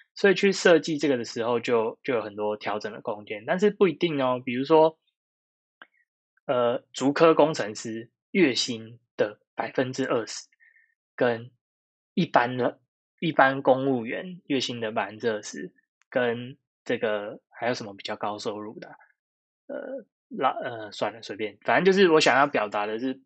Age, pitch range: 20-39, 115-155 Hz